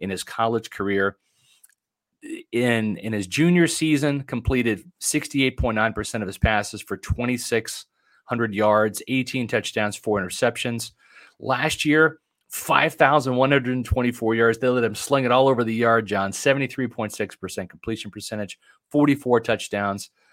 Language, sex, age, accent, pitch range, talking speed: English, male, 30-49, American, 110-140 Hz, 120 wpm